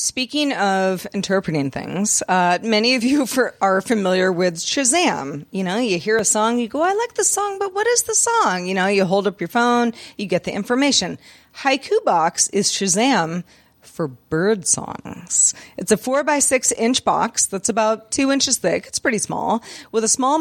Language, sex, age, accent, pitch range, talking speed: English, female, 30-49, American, 190-255 Hz, 190 wpm